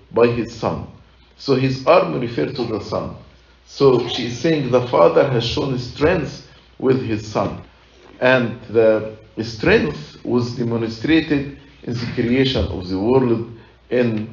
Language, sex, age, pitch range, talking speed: English, male, 50-69, 100-125 Hz, 140 wpm